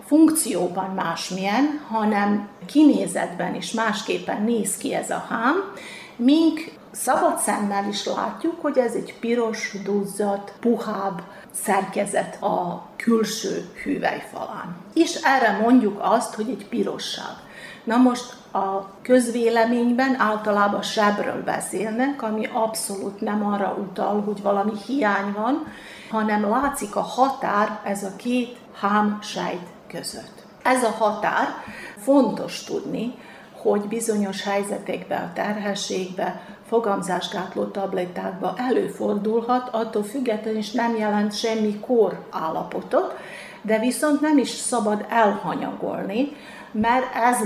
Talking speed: 110 wpm